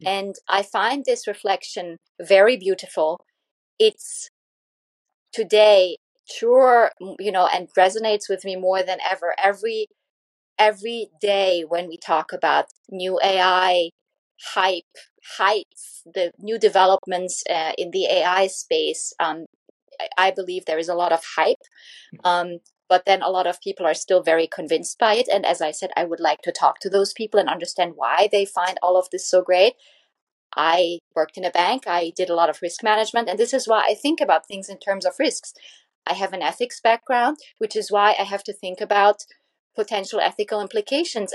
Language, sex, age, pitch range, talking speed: English, female, 20-39, 180-225 Hz, 180 wpm